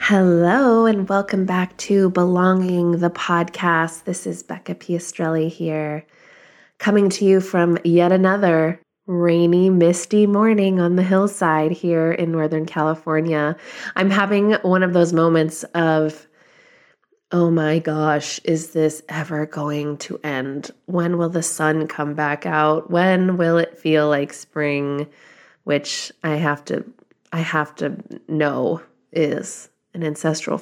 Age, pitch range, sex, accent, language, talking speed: 20-39, 155-190 Hz, female, American, English, 135 wpm